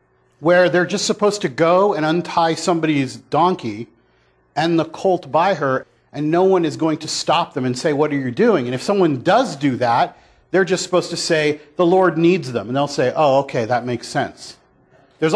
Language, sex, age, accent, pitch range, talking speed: English, male, 40-59, American, 145-195 Hz, 205 wpm